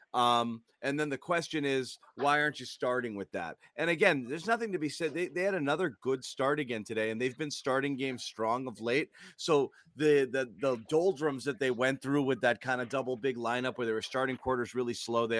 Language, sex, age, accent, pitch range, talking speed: English, male, 30-49, American, 120-150 Hz, 230 wpm